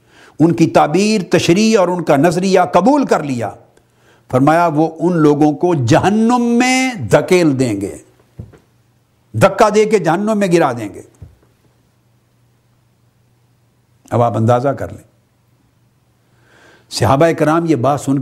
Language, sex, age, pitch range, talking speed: Urdu, male, 60-79, 120-180 Hz, 130 wpm